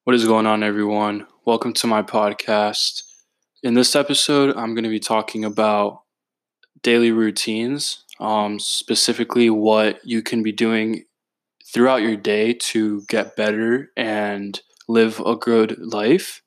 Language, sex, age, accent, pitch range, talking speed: English, male, 10-29, American, 105-115 Hz, 140 wpm